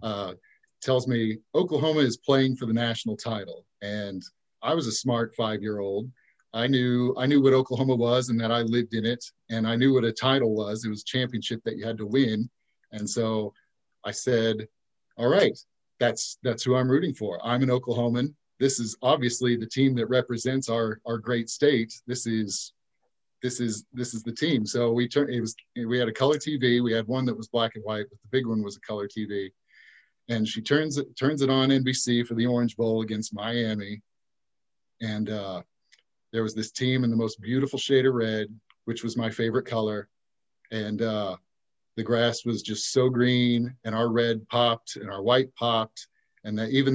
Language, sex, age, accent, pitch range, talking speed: English, male, 40-59, American, 110-130 Hz, 200 wpm